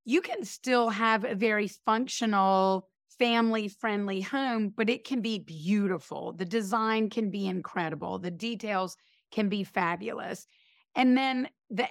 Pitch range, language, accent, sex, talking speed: 195-245 Hz, English, American, female, 135 wpm